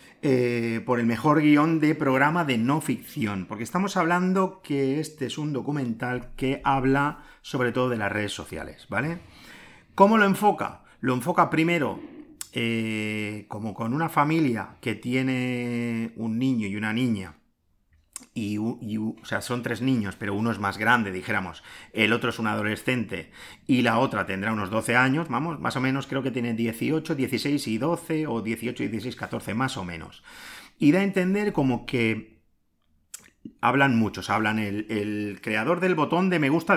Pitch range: 110-150 Hz